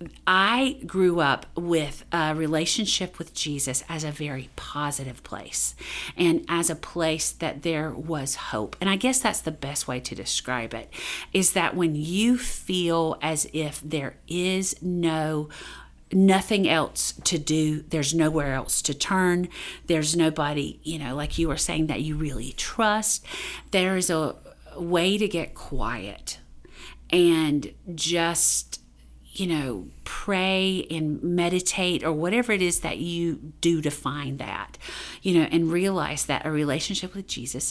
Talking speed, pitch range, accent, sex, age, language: 150 wpm, 150-185 Hz, American, female, 40-59, English